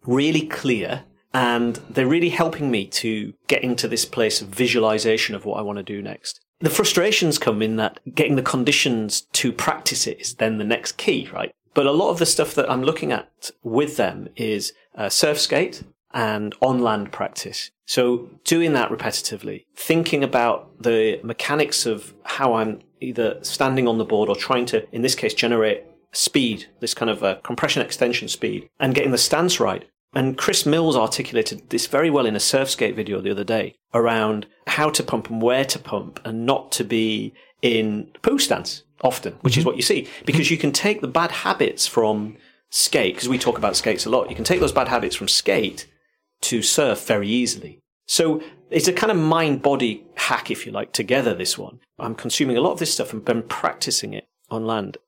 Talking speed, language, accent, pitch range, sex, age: 200 wpm, English, British, 110-155 Hz, male, 40-59